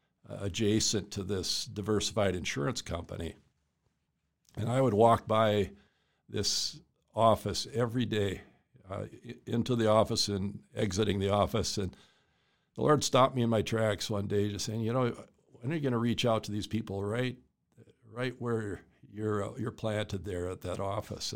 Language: English